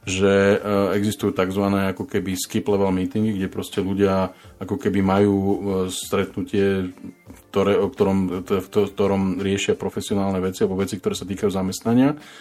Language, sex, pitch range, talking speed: Slovak, male, 95-105 Hz, 140 wpm